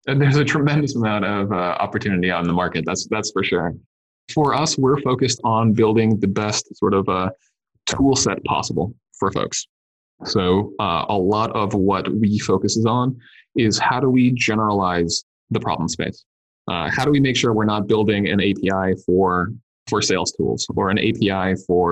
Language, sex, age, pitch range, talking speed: English, male, 20-39, 95-115 Hz, 190 wpm